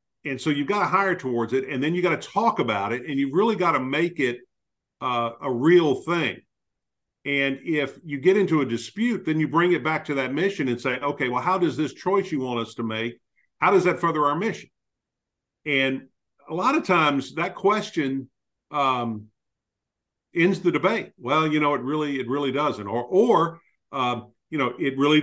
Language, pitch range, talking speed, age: English, 120-150 Hz, 205 wpm, 50-69